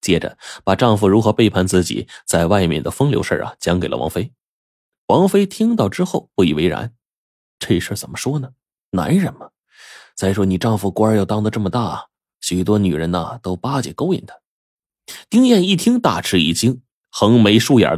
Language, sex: Chinese, male